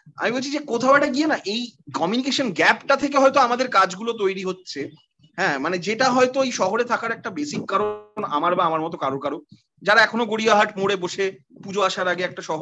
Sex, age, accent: male, 30-49, native